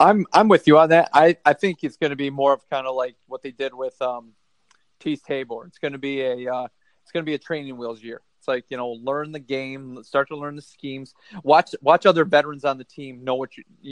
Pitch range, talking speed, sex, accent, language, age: 130-150 Hz, 265 wpm, male, American, English, 30-49